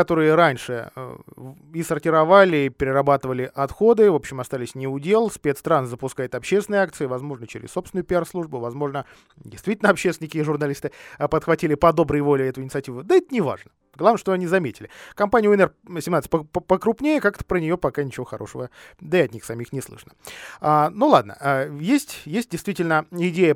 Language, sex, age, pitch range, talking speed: Russian, male, 20-39, 130-185 Hz, 160 wpm